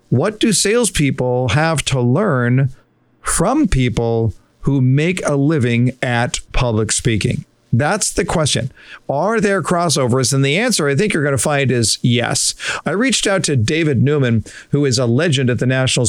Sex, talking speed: male, 170 wpm